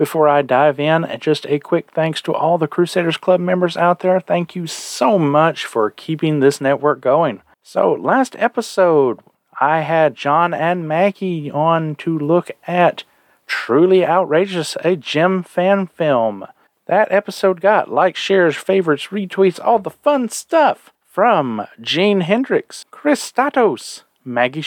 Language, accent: English, American